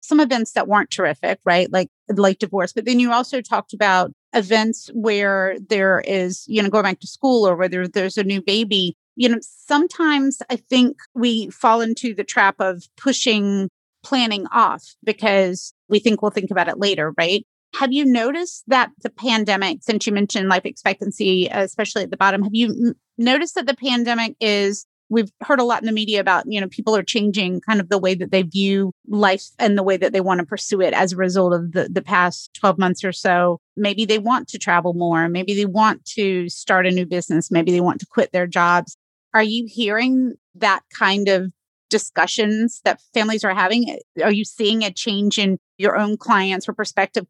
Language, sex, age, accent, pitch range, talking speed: English, female, 30-49, American, 190-230 Hz, 205 wpm